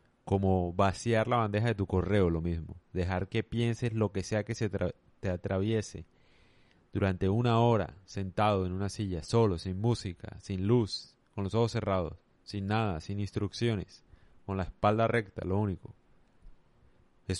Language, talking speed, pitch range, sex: Spanish, 160 wpm, 95-120 Hz, male